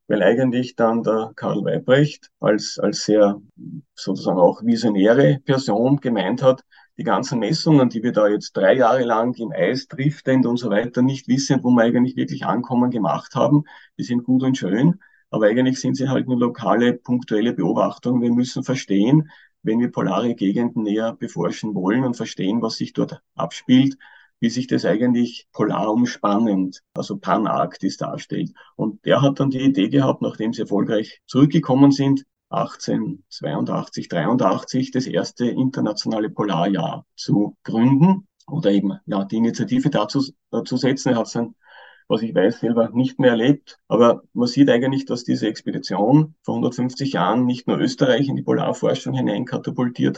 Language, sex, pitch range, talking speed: German, male, 115-135 Hz, 160 wpm